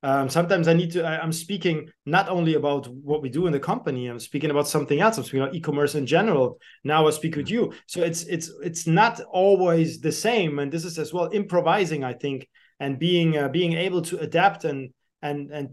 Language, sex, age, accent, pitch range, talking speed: English, male, 30-49, German, 150-180 Hz, 225 wpm